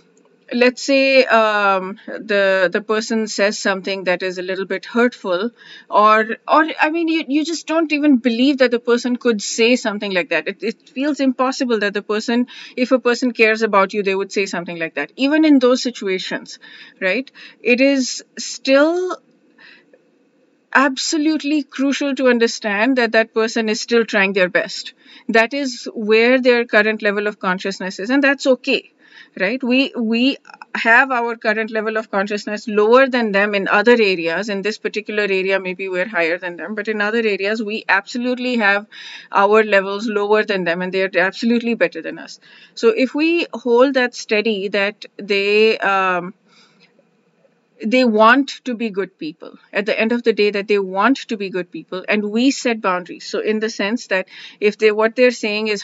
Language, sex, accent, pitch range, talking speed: English, female, Indian, 200-255 Hz, 180 wpm